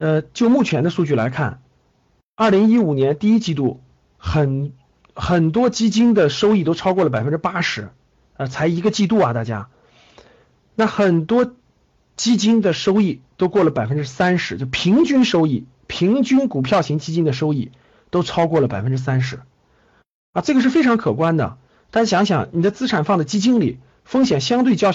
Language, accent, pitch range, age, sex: Chinese, native, 135-210 Hz, 50-69, male